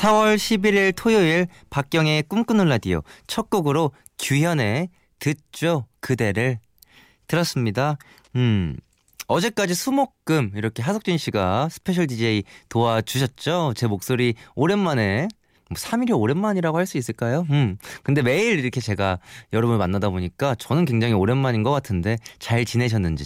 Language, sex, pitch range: Korean, male, 110-170 Hz